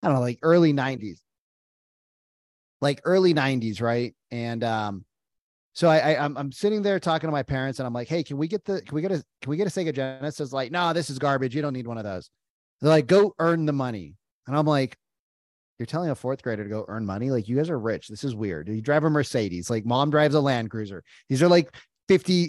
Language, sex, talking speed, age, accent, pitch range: English, male, 250 wpm, 30-49, American, 120-160 Hz